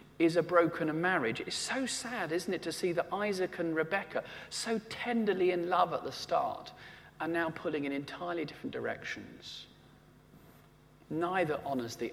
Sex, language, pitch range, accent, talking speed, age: male, English, 135-180 Hz, British, 160 wpm, 40-59